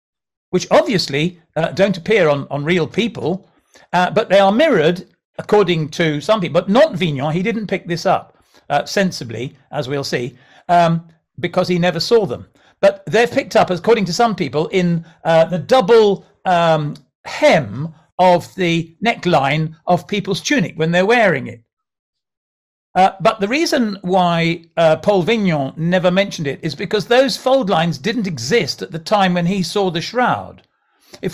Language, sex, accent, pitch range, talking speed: English, male, British, 160-210 Hz, 170 wpm